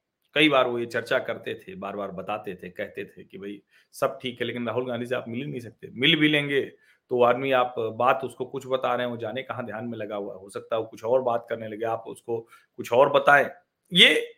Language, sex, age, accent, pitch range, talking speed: Hindi, male, 40-59, native, 125-160 Hz, 245 wpm